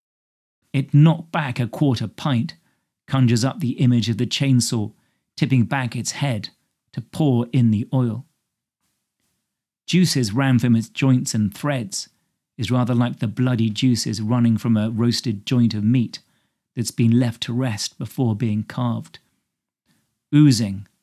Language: English